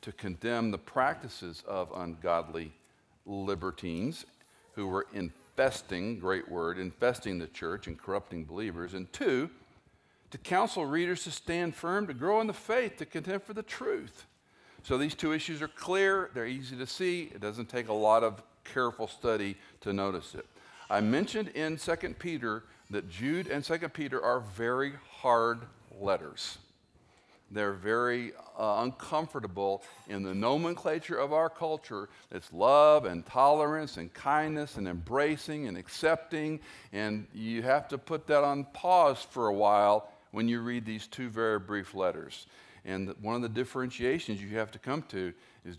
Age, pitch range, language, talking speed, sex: 50-69, 100-155 Hz, English, 160 wpm, male